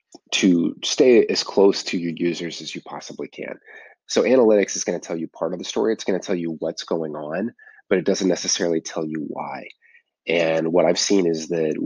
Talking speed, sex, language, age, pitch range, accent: 220 wpm, male, English, 30-49, 80-95 Hz, American